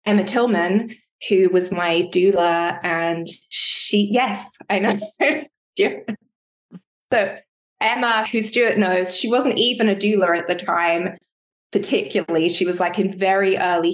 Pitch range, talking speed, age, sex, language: 175-220 Hz, 135 wpm, 20-39, female, English